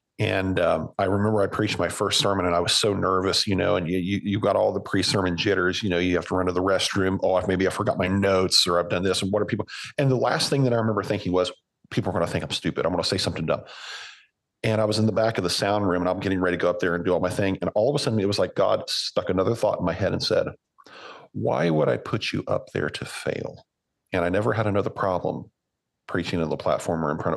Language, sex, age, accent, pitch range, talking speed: English, male, 40-59, American, 95-120 Hz, 290 wpm